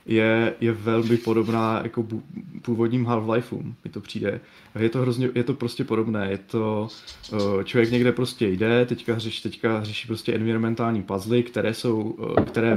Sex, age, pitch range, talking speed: male, 20-39, 100-120 Hz, 180 wpm